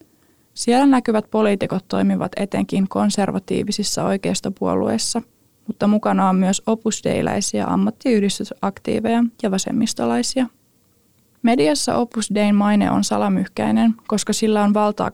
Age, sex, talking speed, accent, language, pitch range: 20-39, female, 95 wpm, native, Finnish, 195-235 Hz